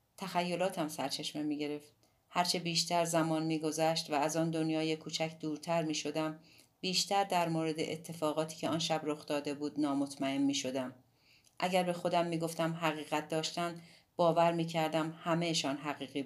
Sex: female